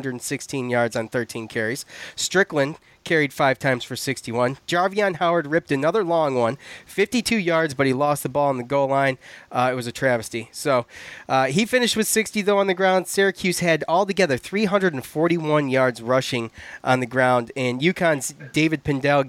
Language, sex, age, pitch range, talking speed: English, male, 30-49, 130-170 Hz, 175 wpm